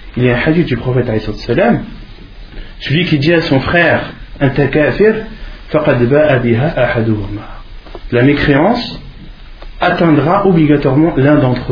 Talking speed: 110 wpm